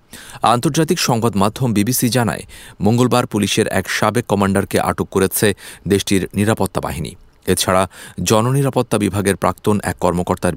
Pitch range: 90-120 Hz